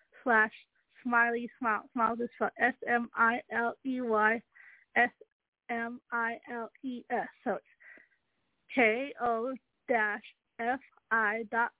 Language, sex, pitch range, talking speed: English, female, 225-255 Hz, 130 wpm